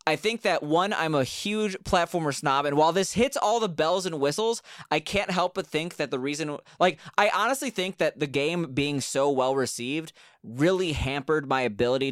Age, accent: 20-39, American